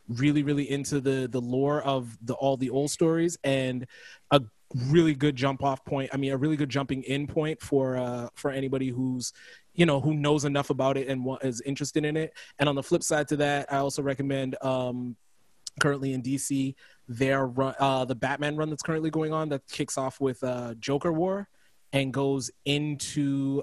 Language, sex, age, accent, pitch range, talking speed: English, male, 20-39, American, 130-145 Hz, 200 wpm